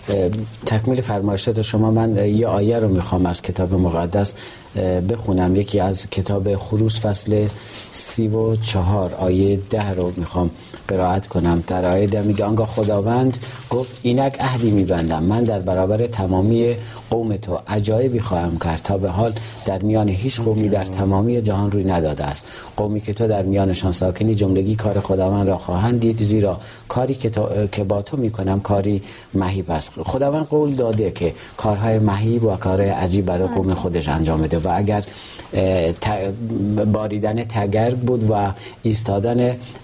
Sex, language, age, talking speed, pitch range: male, Persian, 40-59, 150 wpm, 95-110 Hz